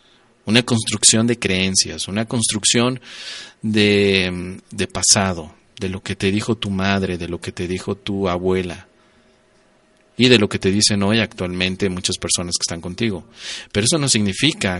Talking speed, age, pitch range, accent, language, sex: 160 wpm, 40-59, 95-115 Hz, Mexican, Spanish, male